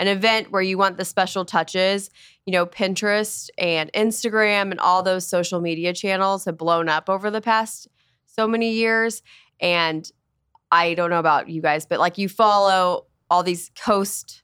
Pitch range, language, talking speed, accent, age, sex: 170-200 Hz, English, 175 wpm, American, 20-39, female